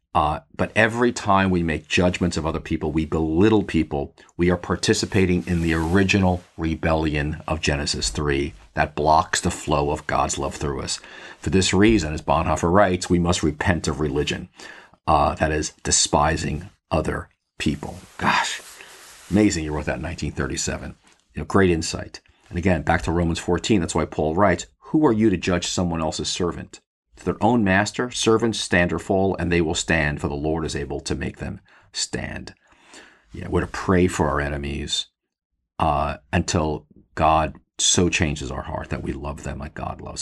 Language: English